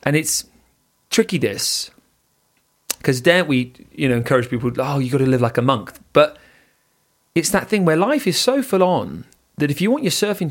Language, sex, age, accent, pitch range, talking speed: English, male, 30-49, British, 115-140 Hz, 205 wpm